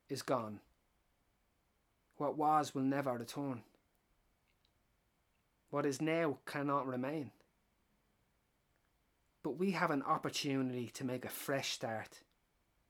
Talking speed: 100 wpm